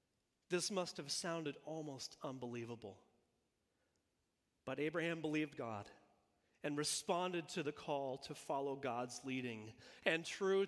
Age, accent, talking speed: 40-59, American, 120 wpm